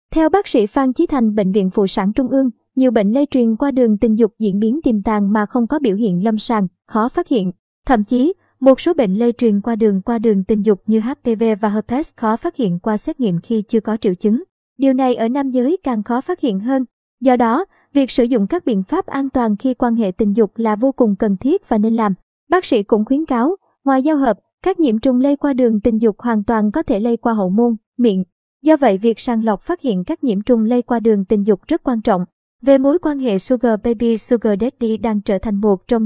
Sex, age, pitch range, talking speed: male, 20-39, 215-270 Hz, 250 wpm